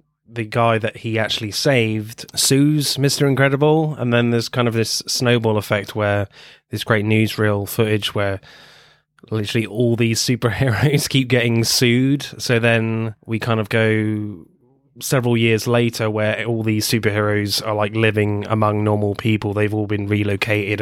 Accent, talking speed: British, 155 wpm